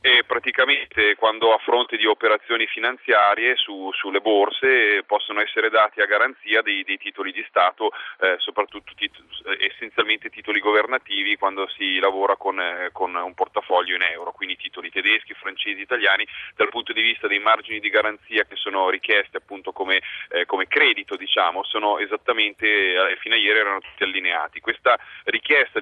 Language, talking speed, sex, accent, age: Italian, 165 wpm, male, native, 30-49